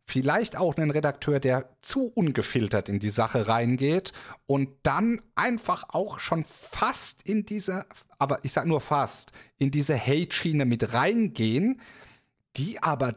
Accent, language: German, German